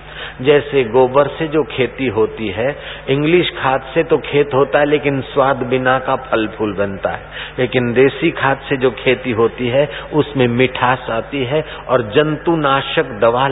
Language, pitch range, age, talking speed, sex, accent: Hindi, 110-140 Hz, 50-69, 165 wpm, male, native